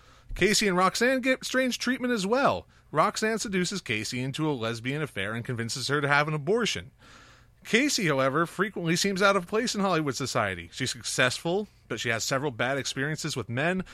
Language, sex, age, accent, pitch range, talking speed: English, male, 30-49, American, 120-200 Hz, 180 wpm